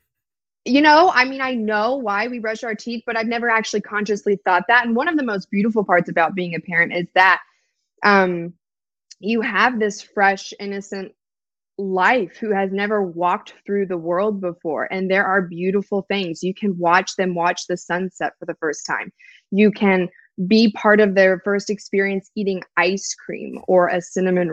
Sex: female